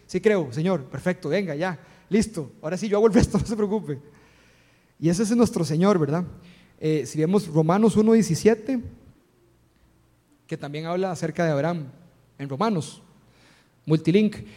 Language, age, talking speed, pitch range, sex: Spanish, 30-49, 150 wpm, 150-190 Hz, male